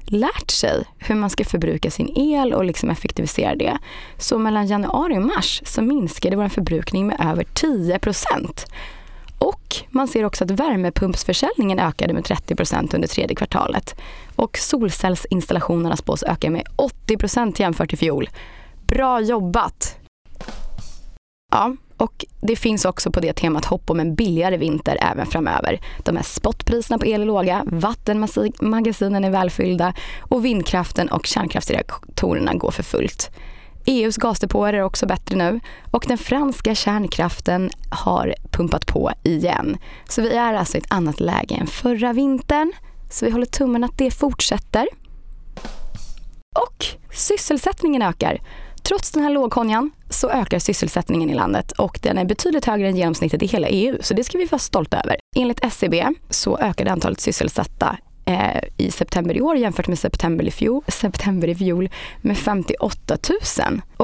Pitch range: 185-250 Hz